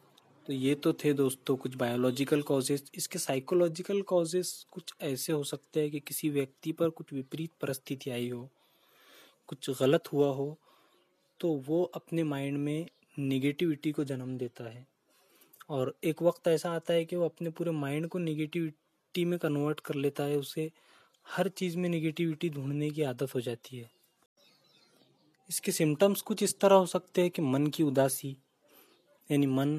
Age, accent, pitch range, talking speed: 20-39, native, 140-165 Hz, 165 wpm